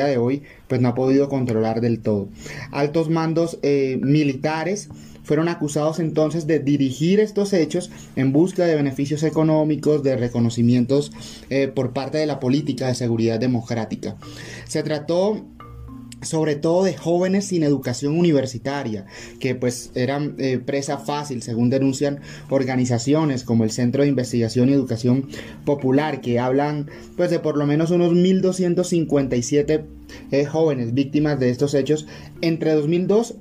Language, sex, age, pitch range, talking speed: Spanish, male, 30-49, 130-165 Hz, 140 wpm